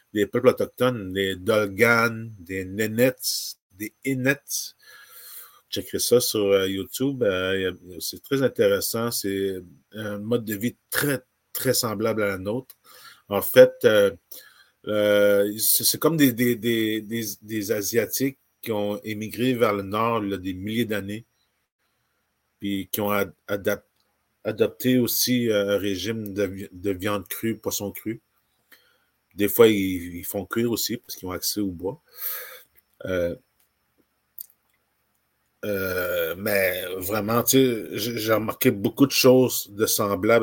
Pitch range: 100-125 Hz